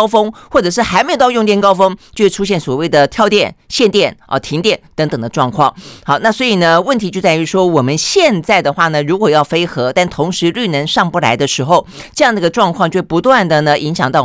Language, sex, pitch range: Chinese, female, 150-215 Hz